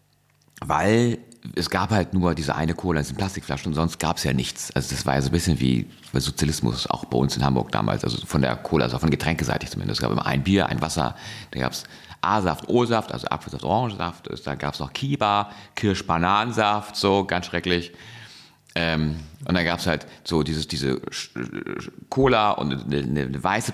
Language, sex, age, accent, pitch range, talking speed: German, male, 40-59, German, 75-105 Hz, 200 wpm